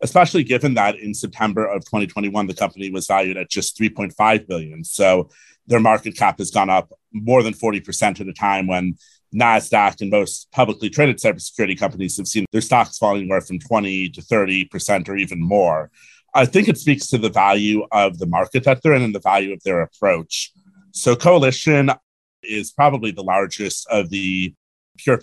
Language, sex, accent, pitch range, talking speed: English, male, American, 95-130 Hz, 185 wpm